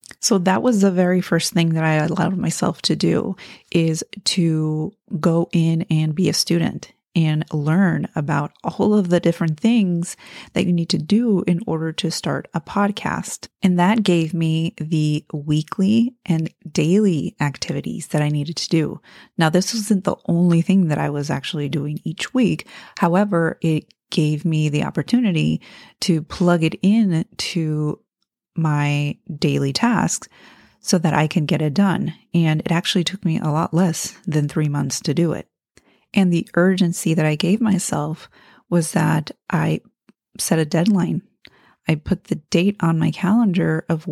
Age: 30-49